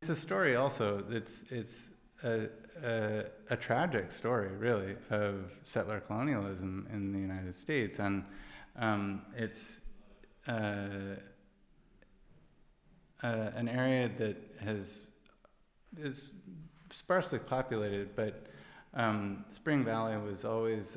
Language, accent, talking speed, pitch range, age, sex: French, American, 105 wpm, 95-115 Hz, 20-39, male